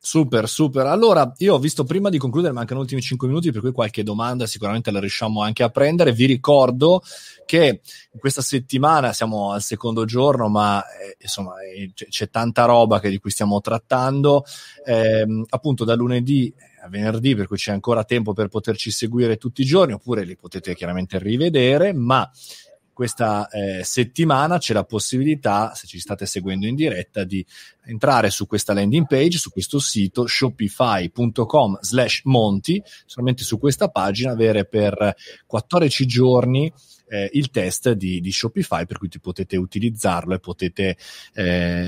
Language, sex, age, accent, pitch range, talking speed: Italian, male, 30-49, native, 105-130 Hz, 160 wpm